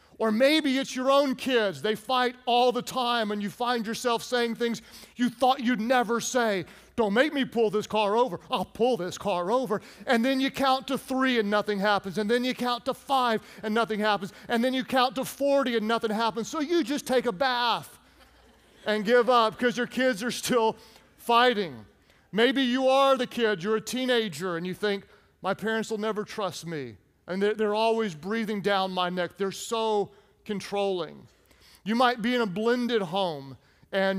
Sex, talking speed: male, 195 wpm